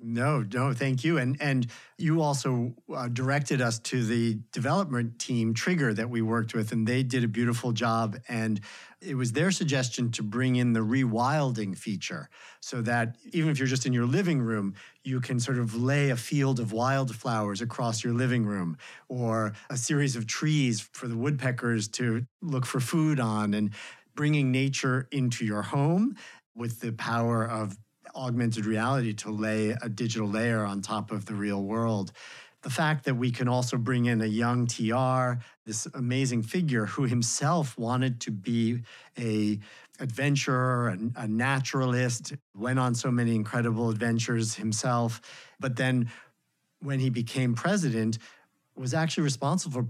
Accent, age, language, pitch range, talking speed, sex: American, 50-69, English, 115-135 Hz, 165 wpm, male